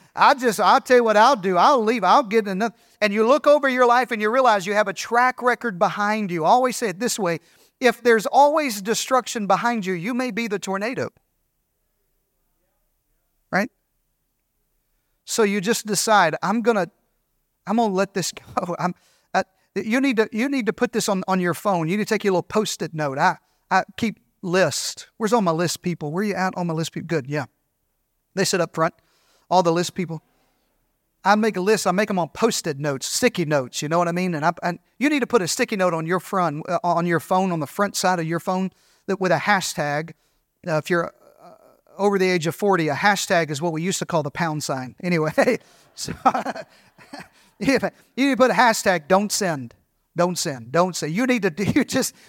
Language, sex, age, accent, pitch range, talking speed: English, male, 40-59, American, 175-230 Hz, 225 wpm